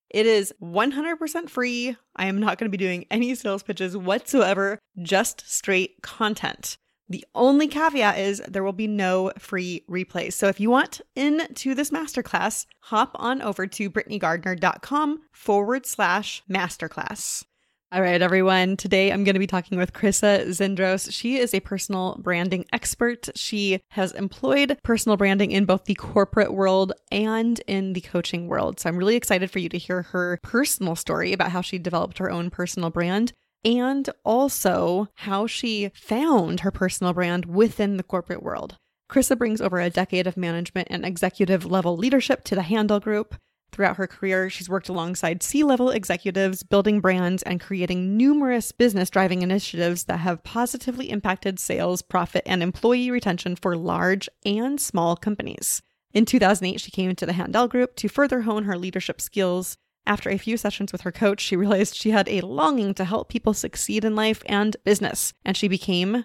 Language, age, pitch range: English, 20-39, 185-225 Hz